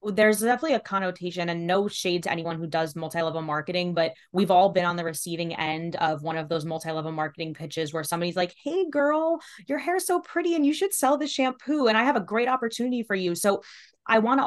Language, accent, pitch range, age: English, American, 170-200 Hz, 20-39